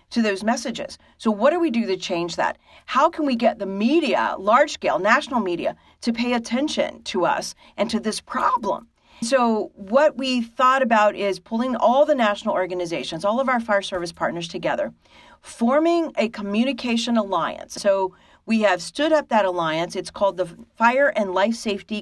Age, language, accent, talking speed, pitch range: 40-59, English, American, 180 wpm, 200-270 Hz